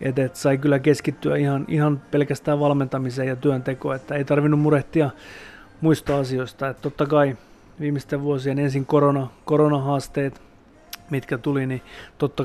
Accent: native